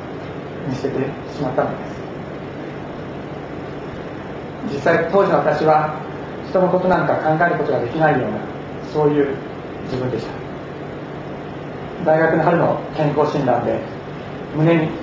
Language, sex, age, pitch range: Japanese, male, 40-59, 145-165 Hz